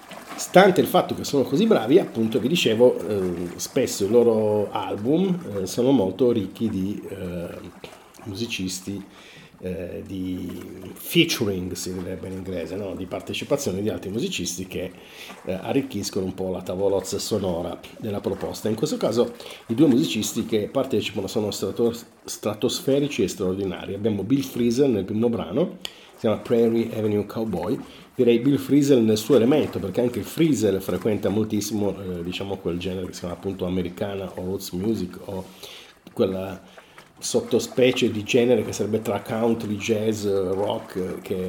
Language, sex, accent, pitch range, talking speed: Italian, male, native, 95-115 Hz, 150 wpm